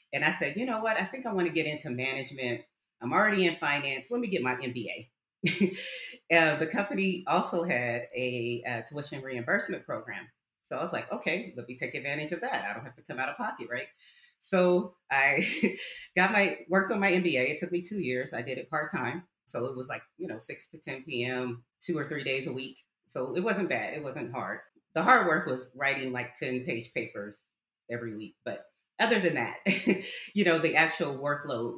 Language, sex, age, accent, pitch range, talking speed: English, female, 30-49, American, 125-170 Hz, 215 wpm